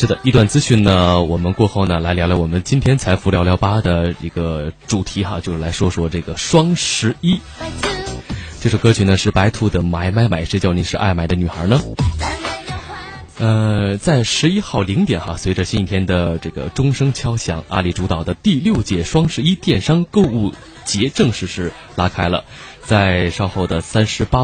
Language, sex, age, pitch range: Chinese, male, 20-39, 90-130 Hz